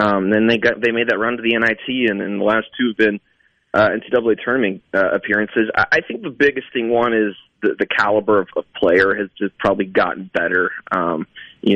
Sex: male